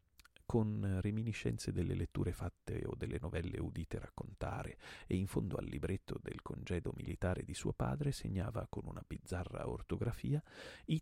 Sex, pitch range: male, 90-115 Hz